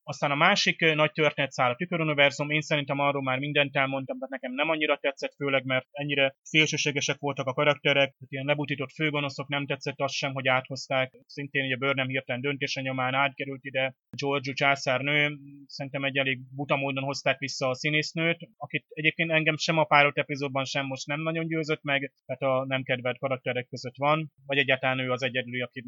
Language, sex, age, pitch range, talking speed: Hungarian, male, 30-49, 130-145 Hz, 185 wpm